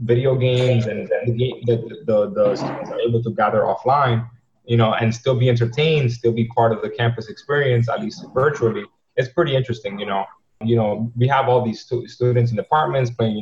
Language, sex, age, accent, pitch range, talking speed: English, male, 20-39, American, 110-130 Hz, 210 wpm